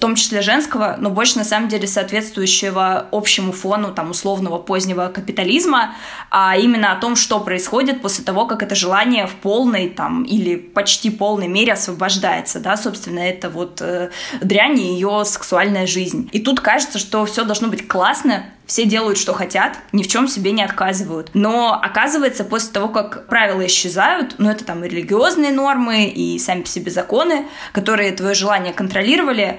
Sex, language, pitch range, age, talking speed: female, Russian, 190-225 Hz, 20-39, 170 wpm